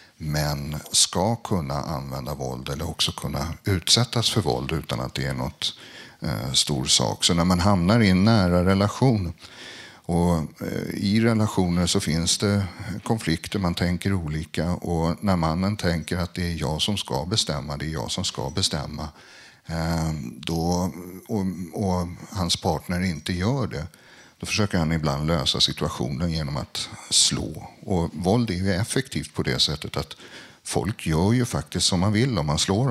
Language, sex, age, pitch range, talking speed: Swedish, male, 60-79, 80-100 Hz, 170 wpm